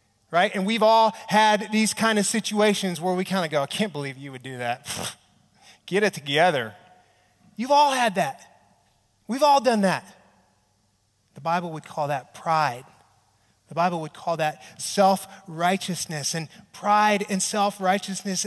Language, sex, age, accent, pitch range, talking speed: English, male, 30-49, American, 160-215 Hz, 155 wpm